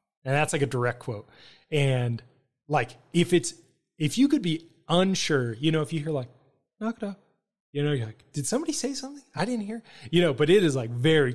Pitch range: 125-150 Hz